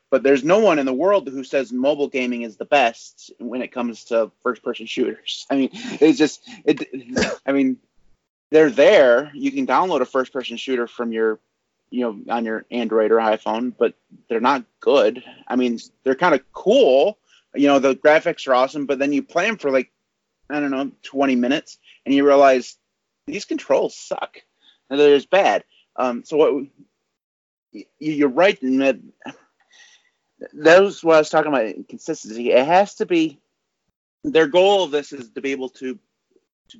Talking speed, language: 185 wpm, English